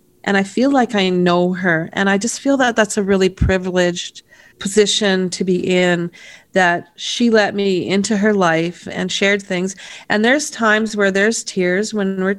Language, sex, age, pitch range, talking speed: English, female, 40-59, 180-210 Hz, 185 wpm